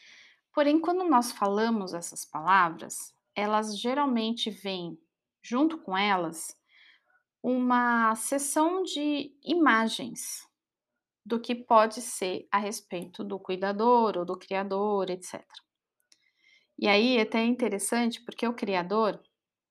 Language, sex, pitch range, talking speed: Portuguese, female, 200-260 Hz, 105 wpm